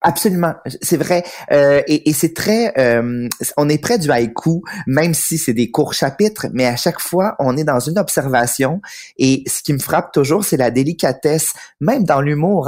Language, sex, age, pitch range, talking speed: French, male, 30-49, 130-170 Hz, 195 wpm